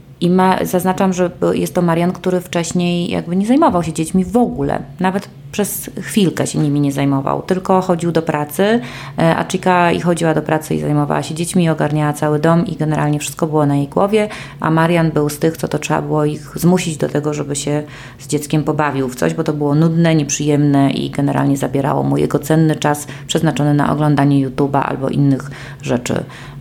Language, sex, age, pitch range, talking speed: Polish, female, 30-49, 145-180 Hz, 190 wpm